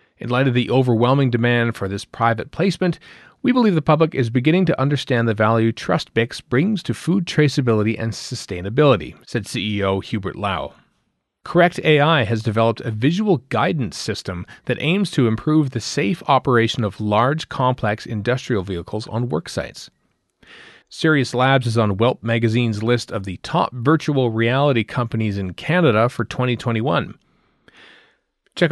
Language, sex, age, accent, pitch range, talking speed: English, male, 40-59, American, 110-145 Hz, 150 wpm